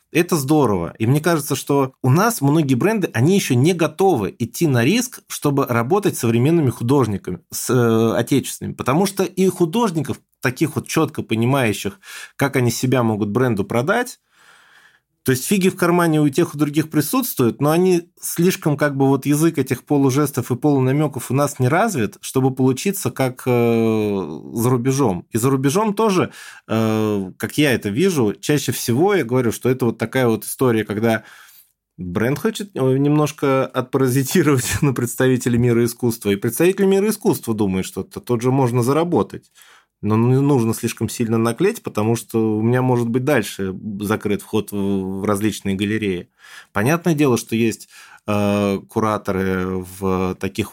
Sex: male